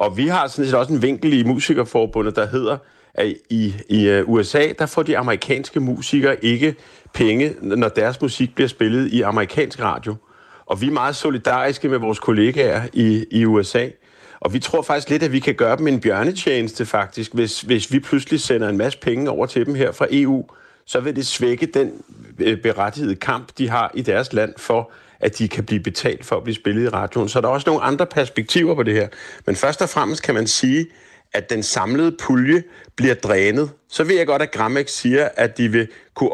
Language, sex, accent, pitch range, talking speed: Danish, male, native, 105-140 Hz, 210 wpm